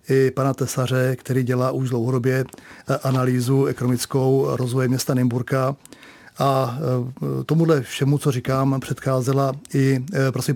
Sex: male